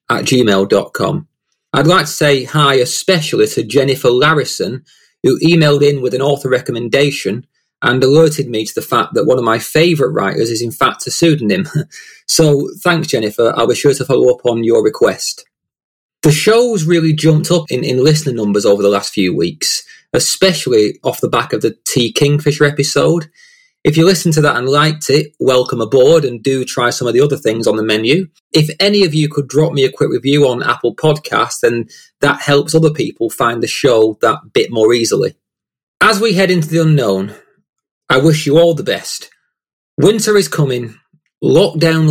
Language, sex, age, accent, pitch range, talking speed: English, male, 30-49, British, 125-170 Hz, 190 wpm